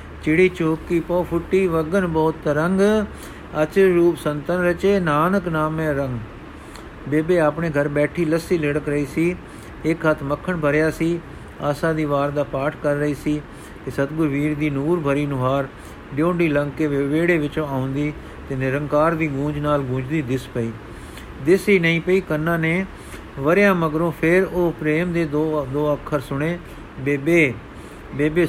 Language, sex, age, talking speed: Punjabi, male, 50-69, 150 wpm